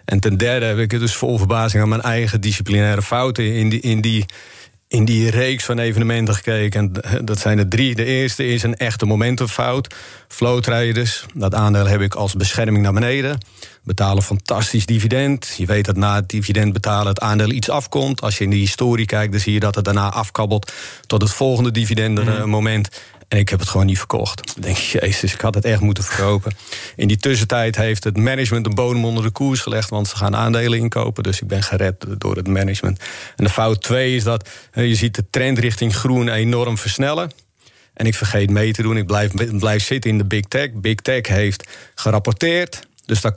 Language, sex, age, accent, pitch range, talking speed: Dutch, male, 40-59, Dutch, 100-115 Hz, 205 wpm